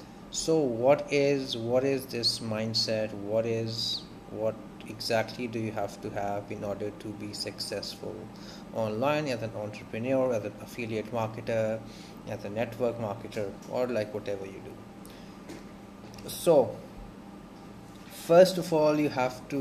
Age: 30-49